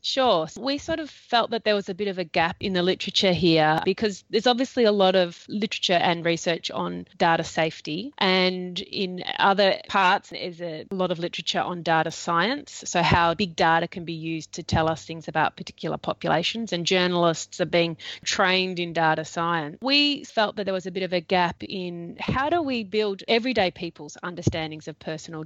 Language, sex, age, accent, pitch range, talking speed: English, female, 30-49, Australian, 170-205 Hz, 200 wpm